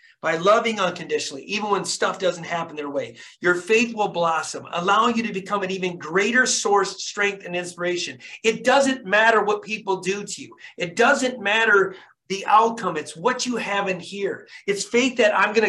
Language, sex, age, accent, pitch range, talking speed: English, male, 40-59, American, 195-245 Hz, 185 wpm